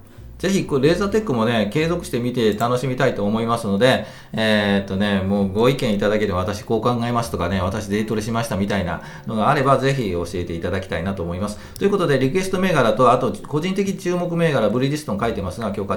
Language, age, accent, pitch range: Japanese, 40-59, native, 100-140 Hz